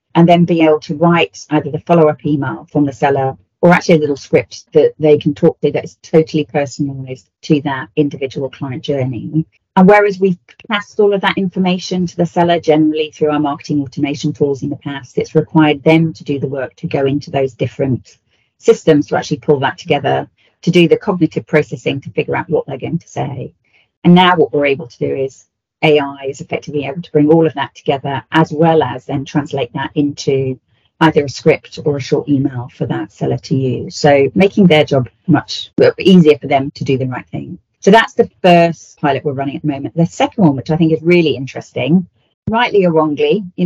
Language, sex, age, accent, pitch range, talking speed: English, female, 40-59, British, 140-170 Hz, 215 wpm